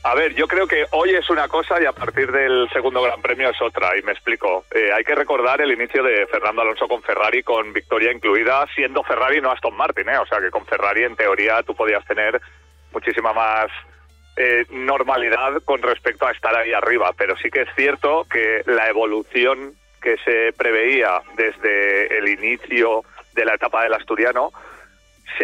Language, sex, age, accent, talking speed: Spanish, male, 40-59, Spanish, 190 wpm